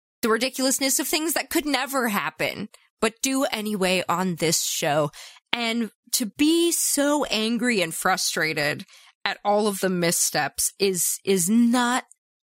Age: 20-39